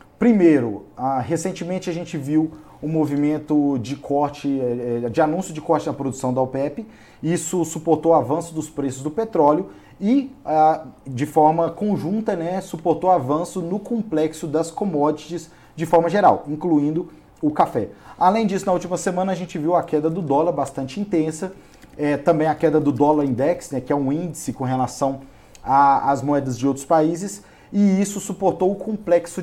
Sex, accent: male, Brazilian